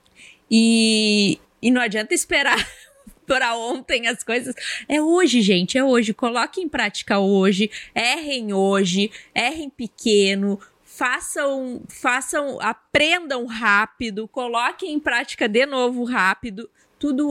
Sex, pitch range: female, 220-290 Hz